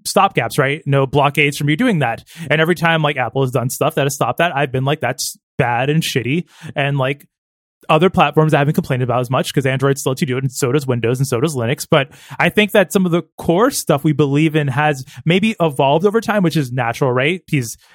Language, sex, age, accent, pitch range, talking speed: English, male, 20-39, American, 135-165 Hz, 250 wpm